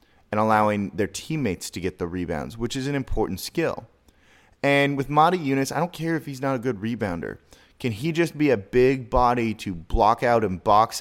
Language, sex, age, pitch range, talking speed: English, male, 20-39, 100-125 Hz, 205 wpm